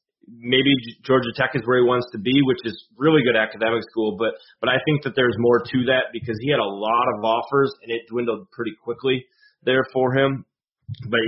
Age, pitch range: 30-49, 110-125 Hz